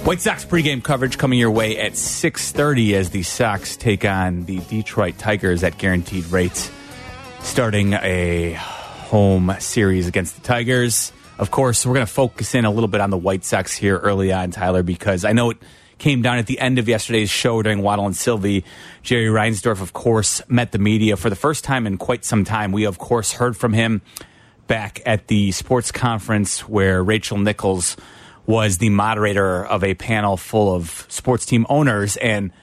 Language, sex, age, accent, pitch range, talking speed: English, male, 30-49, American, 100-120 Hz, 190 wpm